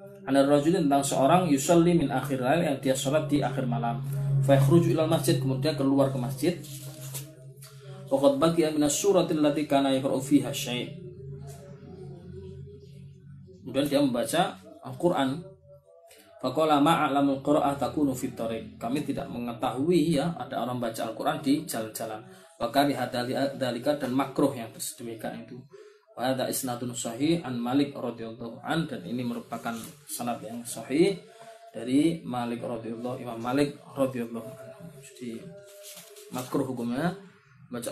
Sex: male